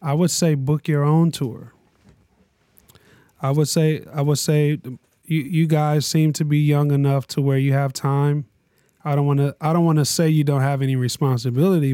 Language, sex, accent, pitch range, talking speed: English, male, American, 135-155 Hz, 195 wpm